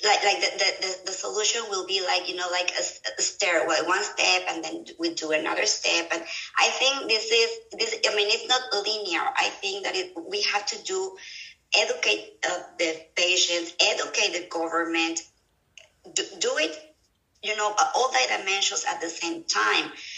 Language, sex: English, male